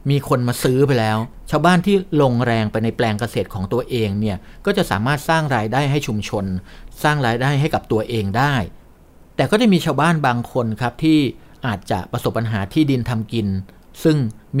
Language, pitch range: Thai, 105-140 Hz